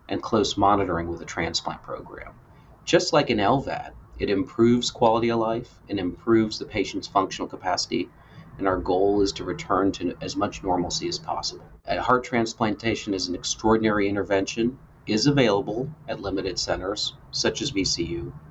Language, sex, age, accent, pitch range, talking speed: English, male, 40-59, American, 95-120 Hz, 155 wpm